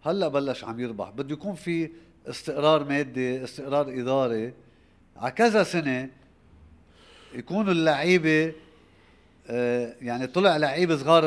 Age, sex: 50-69, male